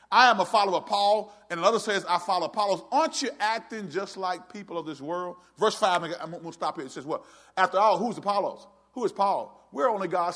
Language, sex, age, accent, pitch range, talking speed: English, male, 40-59, American, 190-260 Hz, 240 wpm